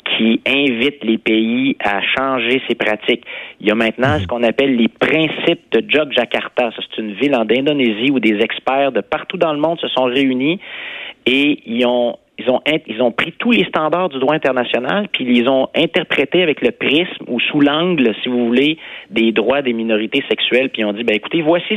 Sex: male